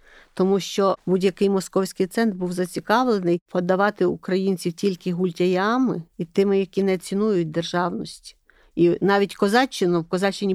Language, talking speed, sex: Ukrainian, 125 wpm, female